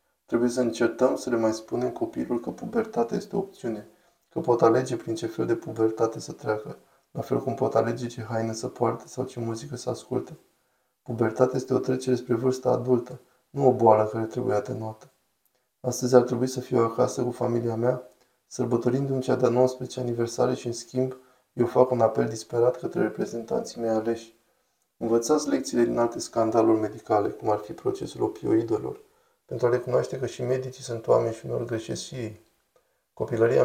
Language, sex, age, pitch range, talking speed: Romanian, male, 20-39, 115-130 Hz, 175 wpm